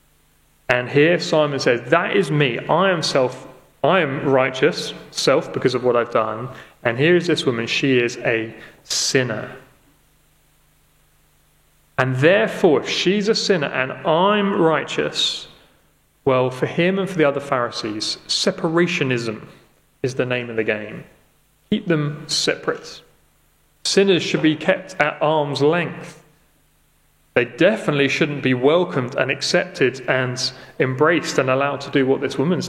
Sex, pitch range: male, 130-165 Hz